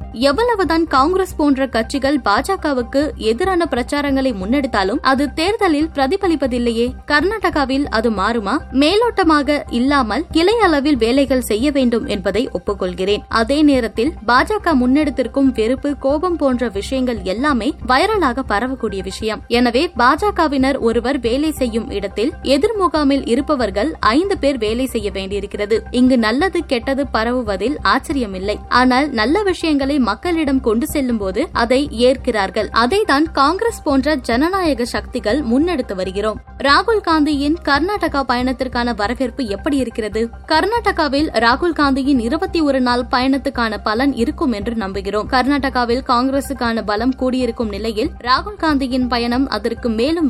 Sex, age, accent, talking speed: female, 20-39, native, 110 wpm